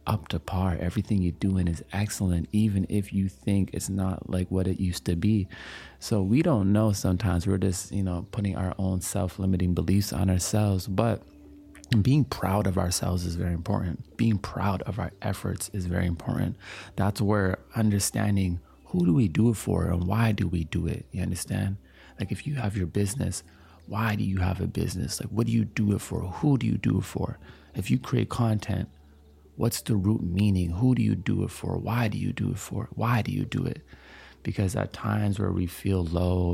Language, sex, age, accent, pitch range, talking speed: English, male, 30-49, American, 85-105 Hz, 205 wpm